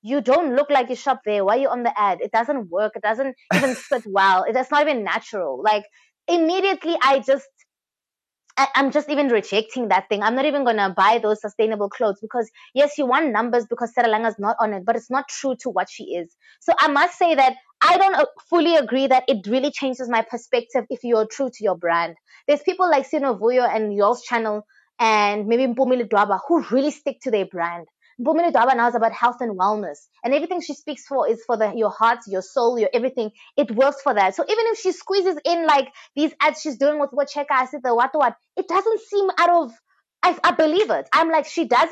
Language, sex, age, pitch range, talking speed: English, female, 20-39, 220-290 Hz, 220 wpm